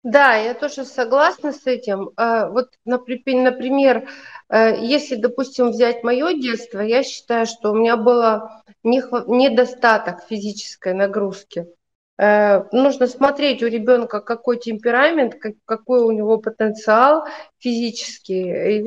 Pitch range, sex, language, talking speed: 210-275 Hz, female, Russian, 105 wpm